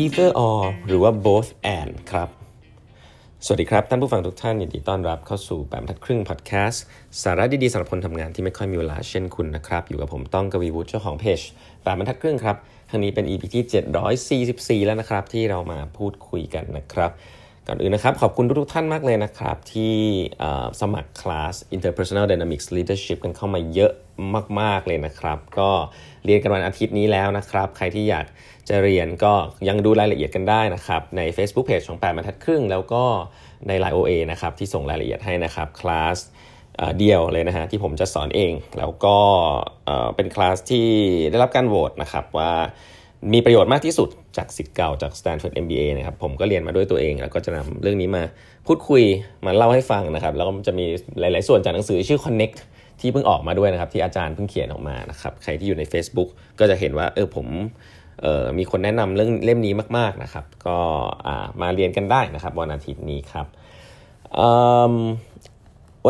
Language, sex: Thai, male